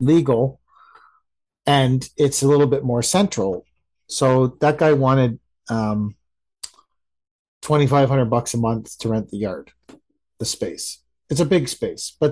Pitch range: 115-150 Hz